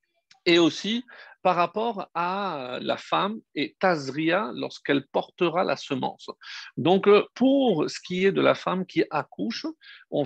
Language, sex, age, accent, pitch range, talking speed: French, male, 50-69, French, 155-215 Hz, 140 wpm